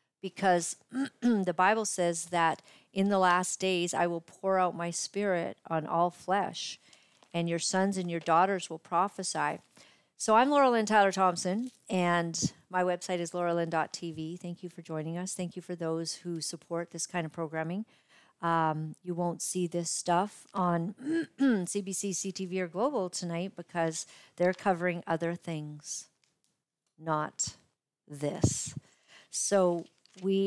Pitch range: 165-190 Hz